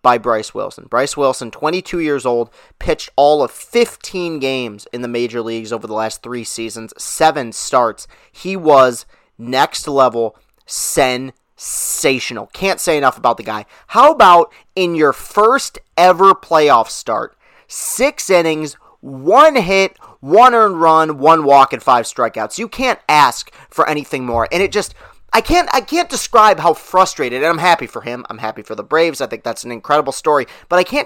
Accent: American